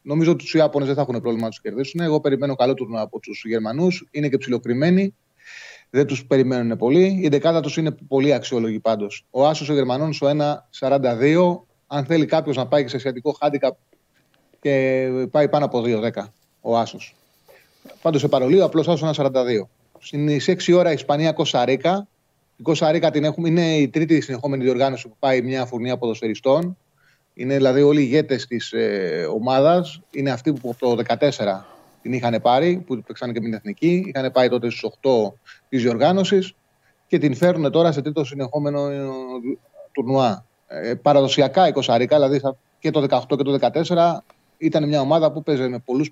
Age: 30-49